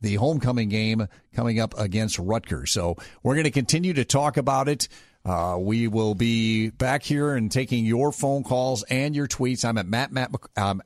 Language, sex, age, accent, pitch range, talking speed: English, male, 50-69, American, 105-135 Hz, 195 wpm